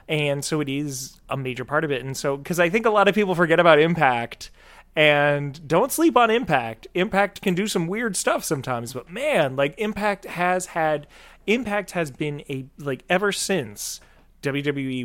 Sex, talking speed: male, 185 wpm